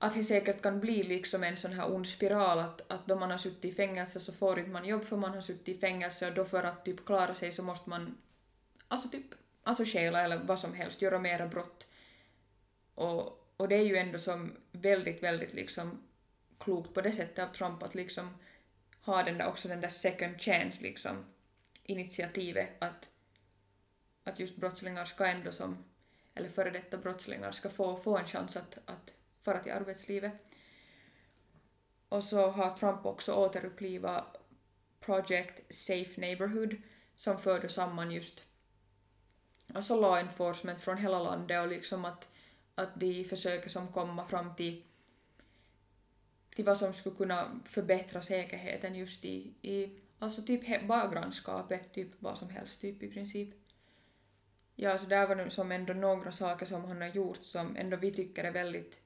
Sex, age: female, 20-39